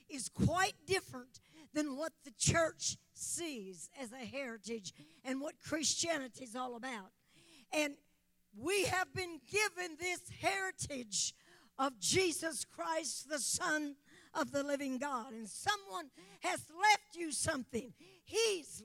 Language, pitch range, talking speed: English, 230-335 Hz, 125 wpm